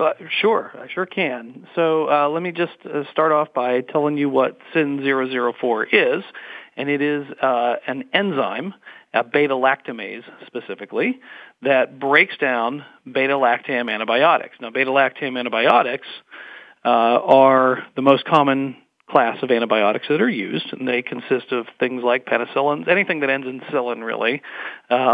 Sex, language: male, English